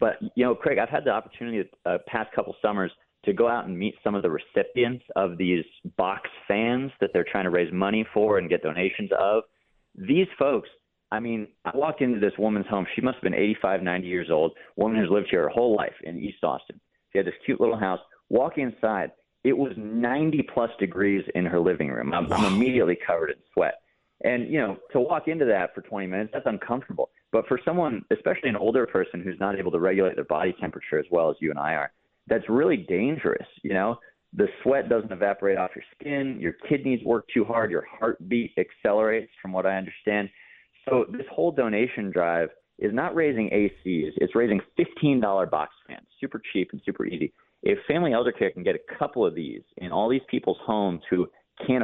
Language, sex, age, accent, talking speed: English, male, 30-49, American, 210 wpm